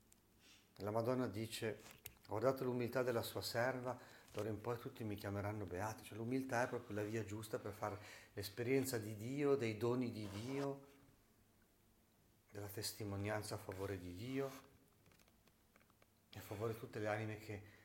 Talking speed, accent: 155 wpm, native